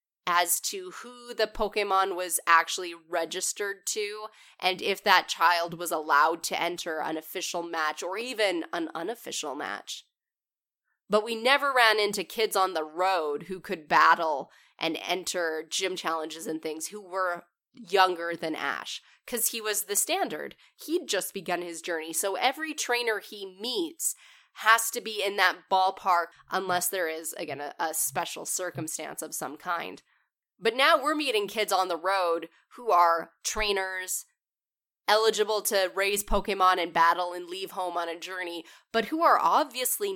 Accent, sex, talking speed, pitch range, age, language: American, female, 160 wpm, 175-225 Hz, 20-39, English